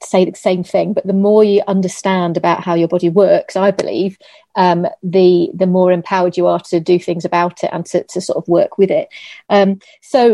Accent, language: British, English